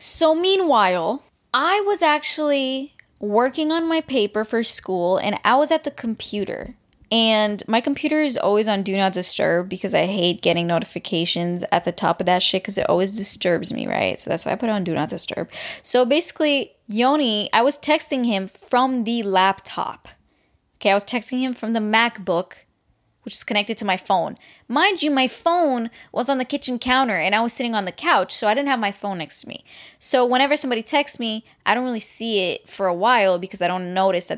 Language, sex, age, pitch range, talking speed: English, female, 10-29, 195-265 Hz, 210 wpm